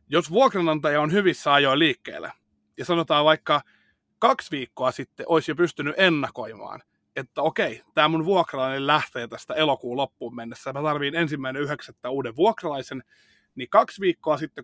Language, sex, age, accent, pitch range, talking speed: Finnish, male, 30-49, native, 120-155 Hz, 150 wpm